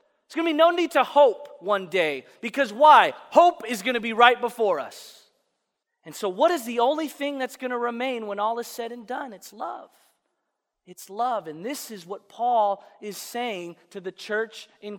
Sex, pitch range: male, 220-285 Hz